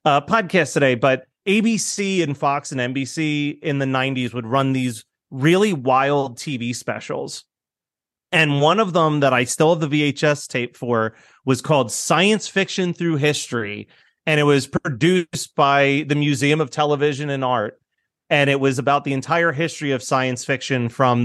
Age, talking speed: 30-49, 170 wpm